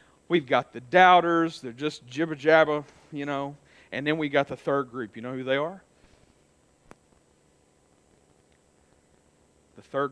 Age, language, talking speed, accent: 50-69, English, 135 wpm, American